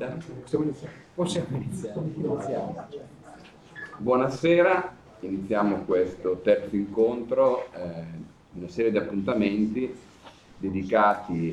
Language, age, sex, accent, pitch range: Italian, 40-59, male, native, 90-125 Hz